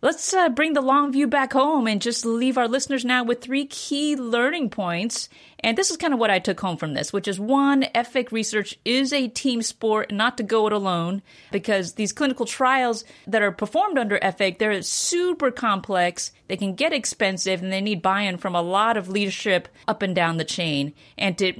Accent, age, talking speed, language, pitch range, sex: American, 30-49, 210 wpm, English, 185-255 Hz, female